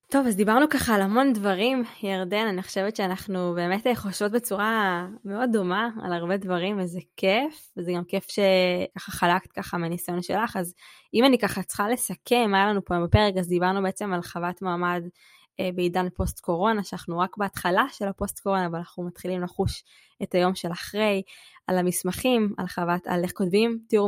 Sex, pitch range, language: female, 180-200 Hz, Hebrew